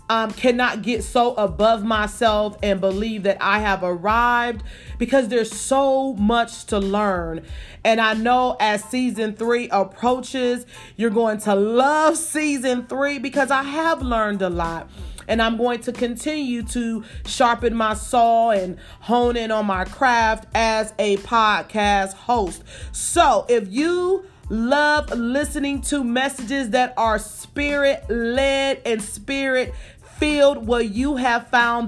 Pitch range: 225-280 Hz